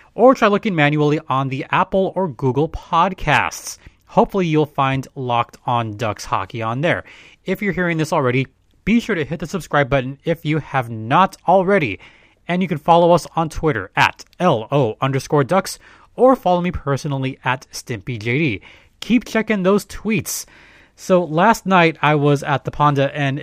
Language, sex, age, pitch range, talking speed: English, male, 30-49, 130-180 Hz, 170 wpm